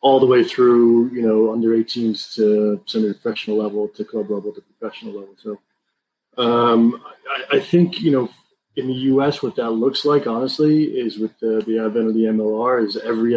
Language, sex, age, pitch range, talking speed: English, male, 30-49, 105-120 Hz, 195 wpm